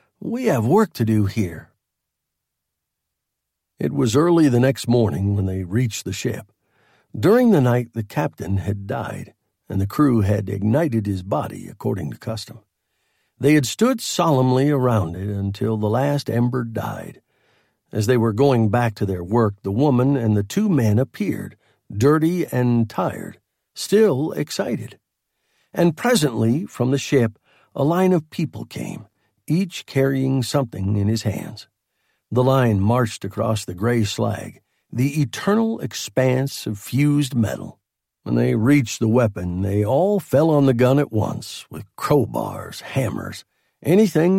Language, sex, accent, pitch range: English, male, American, 110-145 Hz